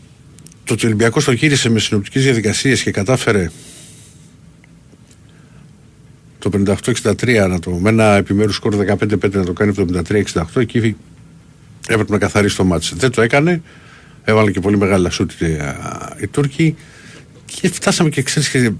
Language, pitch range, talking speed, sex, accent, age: Greek, 95-140 Hz, 140 wpm, male, native, 50-69